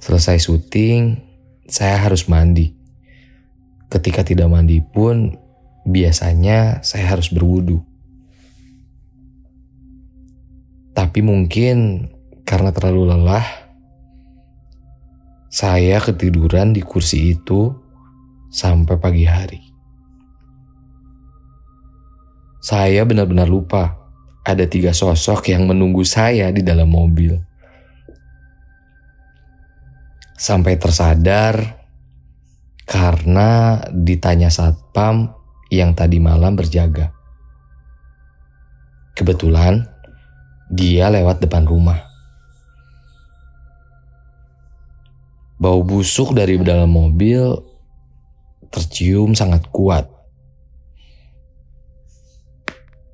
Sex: male